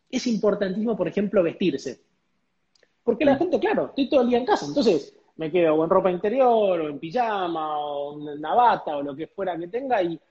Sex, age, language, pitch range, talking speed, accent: male, 20-39, Spanish, 170-235 Hz, 200 wpm, Argentinian